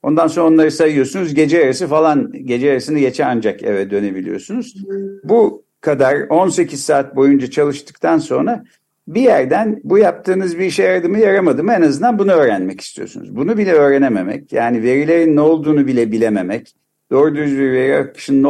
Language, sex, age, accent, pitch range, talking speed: Turkish, male, 60-79, native, 125-180 Hz, 150 wpm